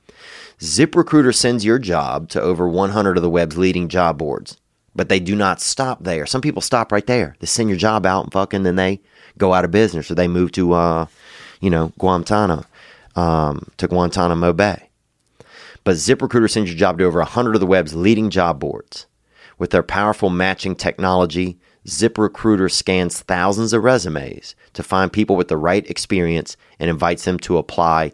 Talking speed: 185 wpm